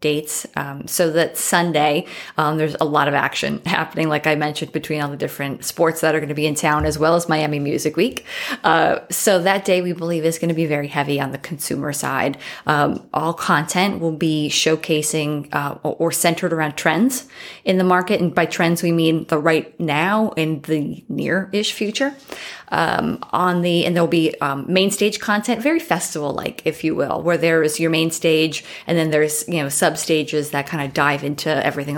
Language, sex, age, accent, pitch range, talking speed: English, female, 20-39, American, 150-175 Hz, 205 wpm